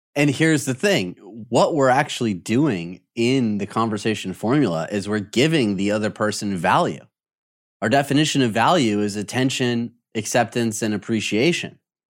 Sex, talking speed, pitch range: male, 140 wpm, 110-155 Hz